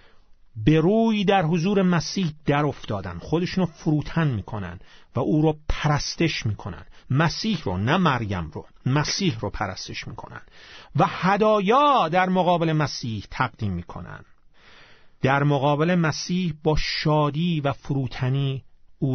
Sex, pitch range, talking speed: male, 145-200 Hz, 125 wpm